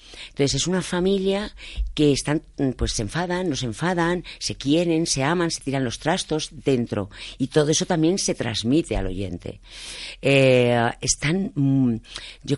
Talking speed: 150 wpm